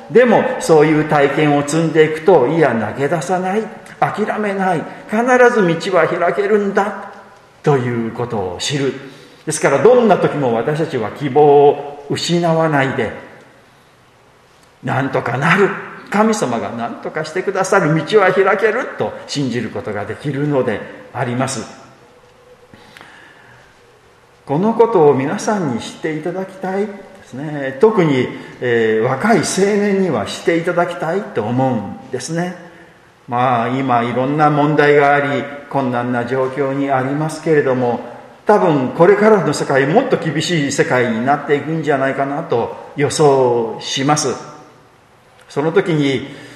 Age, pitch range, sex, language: 40-59, 125-175 Hz, male, Japanese